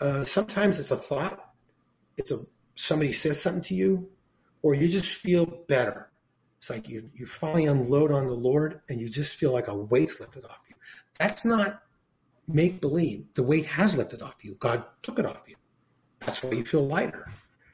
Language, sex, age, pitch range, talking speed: English, male, 40-59, 125-165 Hz, 190 wpm